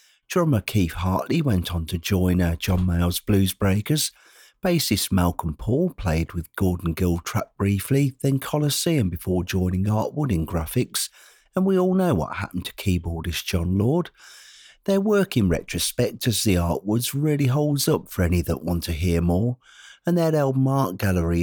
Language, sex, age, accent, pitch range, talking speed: English, male, 50-69, British, 85-140 Hz, 170 wpm